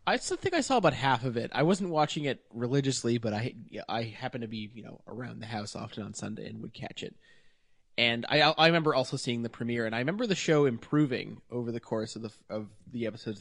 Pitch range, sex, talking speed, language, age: 115-135 Hz, male, 240 wpm, English, 20-39